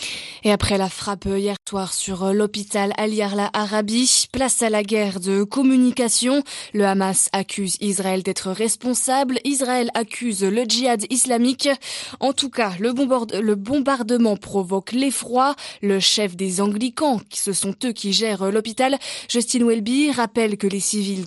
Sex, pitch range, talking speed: female, 205-255 Hz, 140 wpm